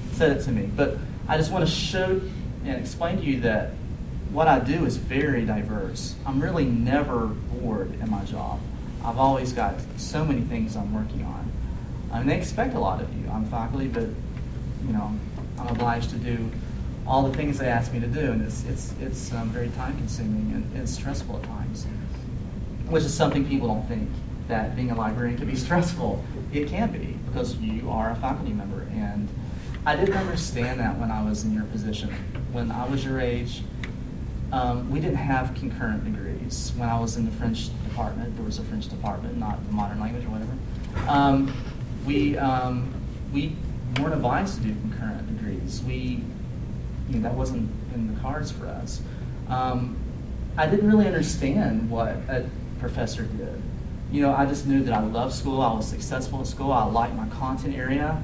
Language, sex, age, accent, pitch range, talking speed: English, male, 30-49, American, 110-135 Hz, 190 wpm